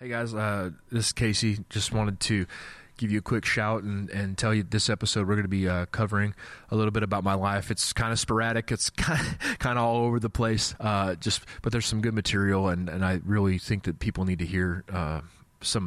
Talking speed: 240 wpm